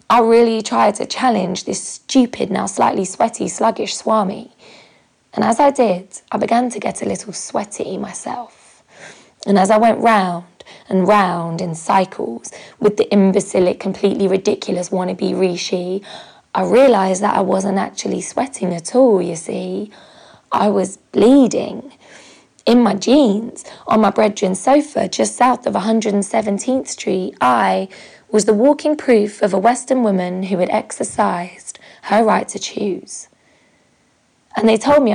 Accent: British